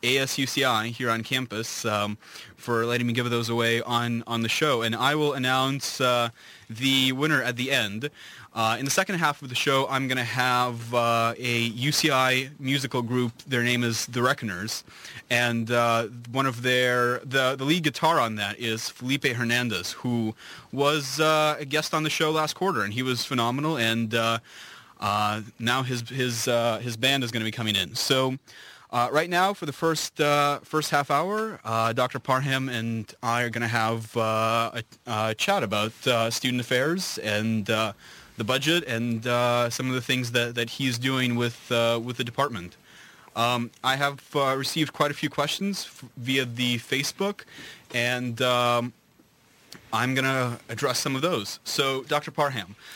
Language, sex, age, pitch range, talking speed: English, male, 20-39, 115-135 Hz, 185 wpm